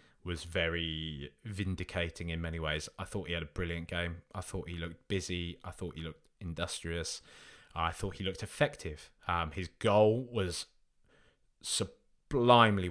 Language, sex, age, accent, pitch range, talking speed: English, male, 20-39, British, 90-120 Hz, 155 wpm